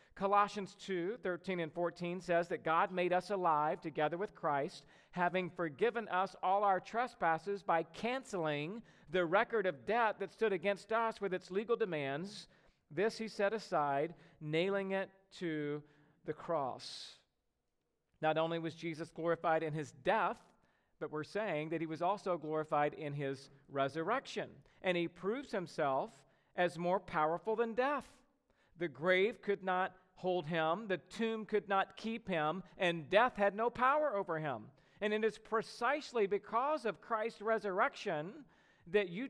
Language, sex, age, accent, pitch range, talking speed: English, male, 40-59, American, 165-215 Hz, 155 wpm